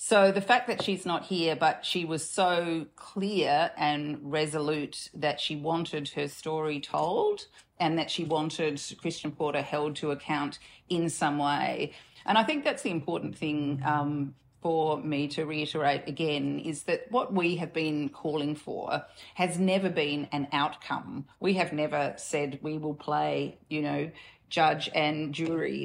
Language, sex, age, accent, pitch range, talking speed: English, female, 40-59, Australian, 150-180 Hz, 165 wpm